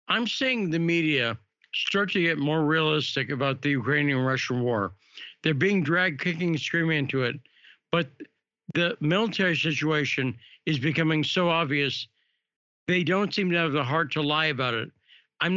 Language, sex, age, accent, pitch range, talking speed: English, male, 60-79, American, 140-175 Hz, 160 wpm